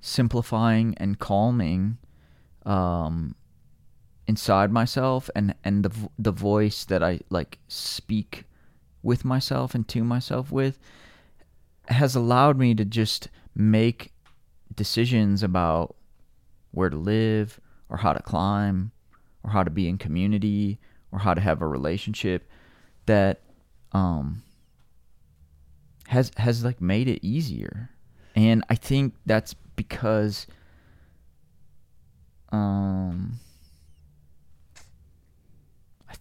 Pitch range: 80-110 Hz